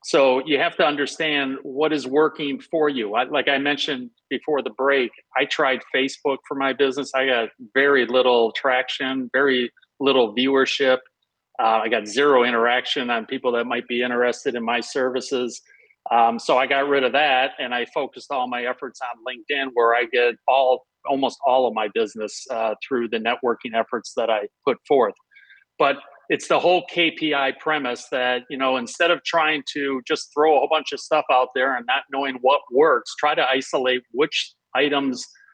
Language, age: English, 40-59